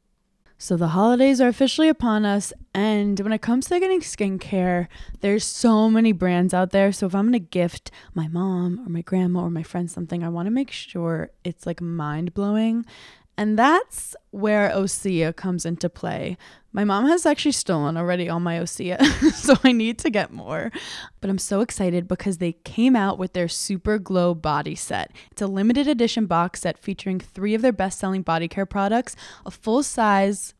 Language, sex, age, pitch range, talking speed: English, female, 20-39, 175-225 Hz, 185 wpm